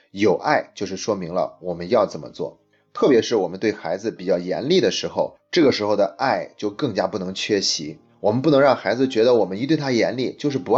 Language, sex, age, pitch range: Chinese, male, 30-49, 95-140 Hz